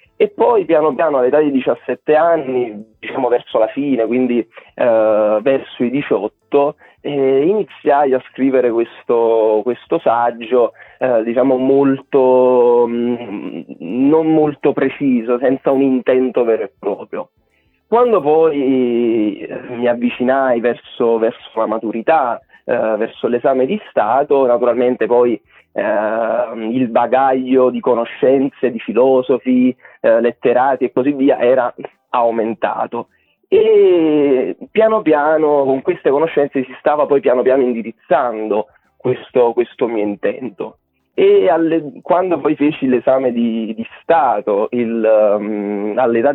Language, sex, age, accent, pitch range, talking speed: Italian, male, 30-49, native, 120-150 Hz, 115 wpm